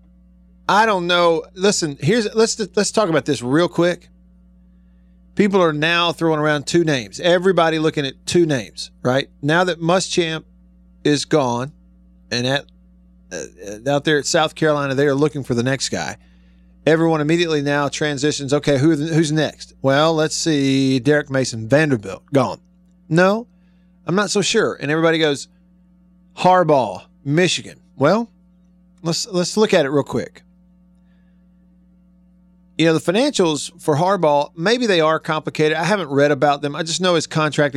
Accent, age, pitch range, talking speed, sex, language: American, 40-59, 140-180 Hz, 155 wpm, male, English